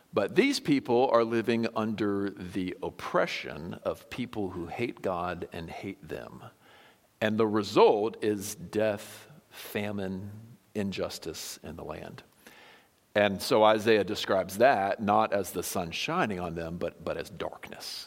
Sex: male